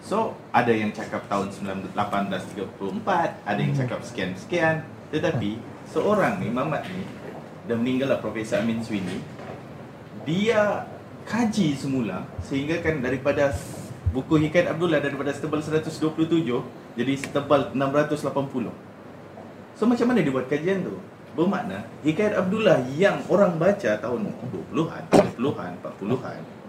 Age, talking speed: 30-49, 115 wpm